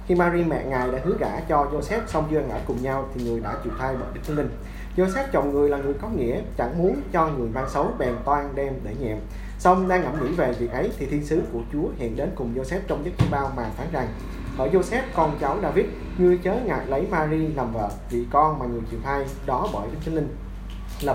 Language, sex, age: Vietnamese, male, 20-39